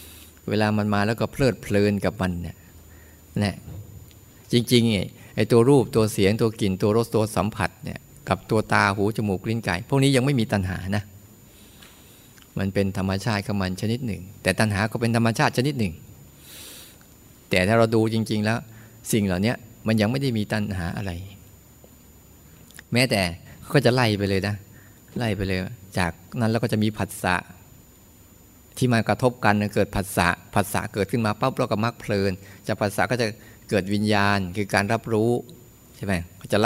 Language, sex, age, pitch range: Thai, male, 20-39, 95-115 Hz